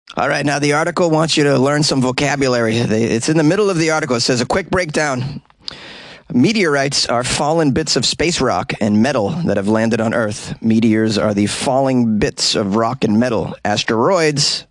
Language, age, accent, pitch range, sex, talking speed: English, 30-49, American, 125-185 Hz, male, 190 wpm